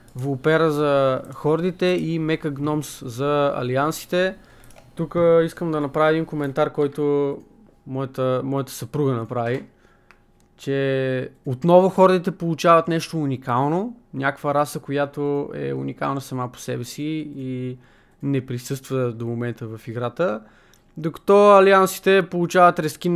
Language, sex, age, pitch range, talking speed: Bulgarian, male, 20-39, 130-155 Hz, 115 wpm